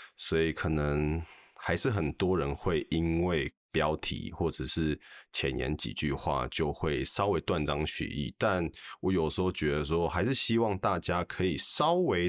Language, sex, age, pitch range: Chinese, male, 20-39, 75-95 Hz